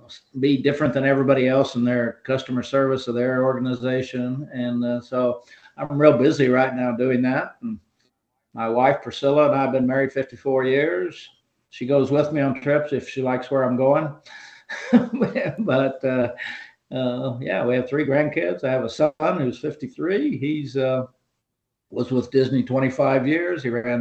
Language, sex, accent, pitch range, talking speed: English, male, American, 125-145 Hz, 165 wpm